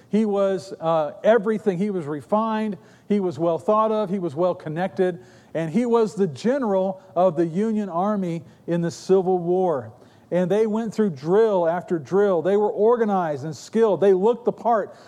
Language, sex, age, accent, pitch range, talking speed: English, male, 50-69, American, 155-195 Hz, 180 wpm